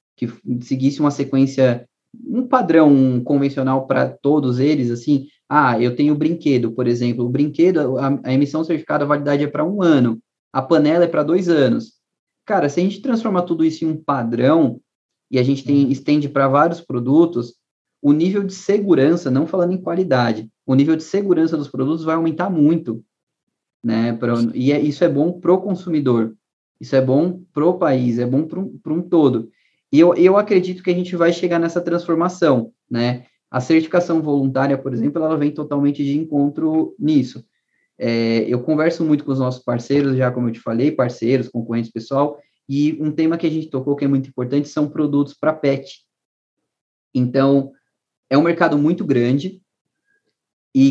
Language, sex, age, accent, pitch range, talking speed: Portuguese, male, 20-39, Brazilian, 130-170 Hz, 180 wpm